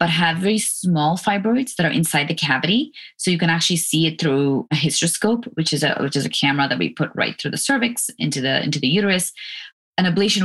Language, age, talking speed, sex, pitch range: English, 20-39, 230 wpm, female, 140-170 Hz